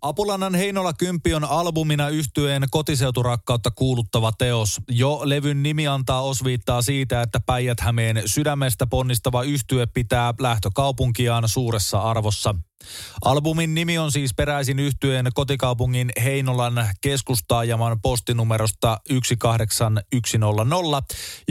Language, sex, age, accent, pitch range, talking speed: Finnish, male, 20-39, native, 120-140 Hz, 100 wpm